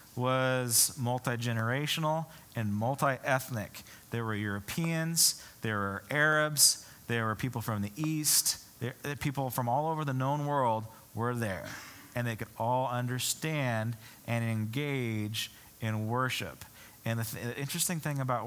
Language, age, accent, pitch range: English, 40-59, American, 110-140 Hz